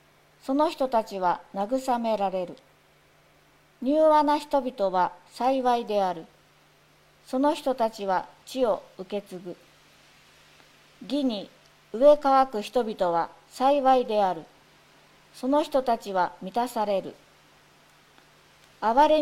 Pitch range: 185-265 Hz